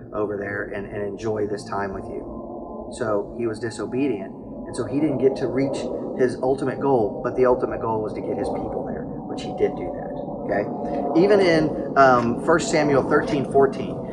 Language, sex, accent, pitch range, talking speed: English, male, American, 125-165 Hz, 195 wpm